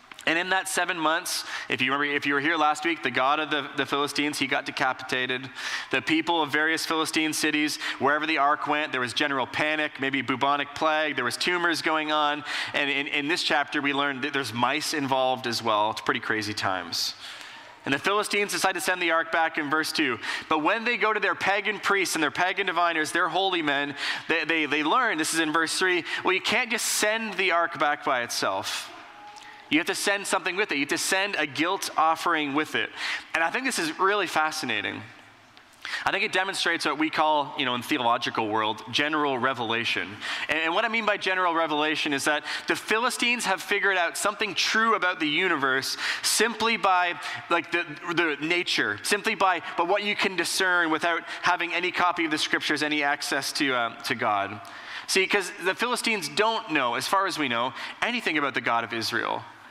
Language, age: English, 30-49